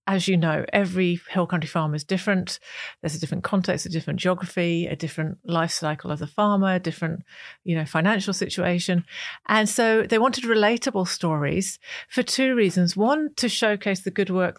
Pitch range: 165-200 Hz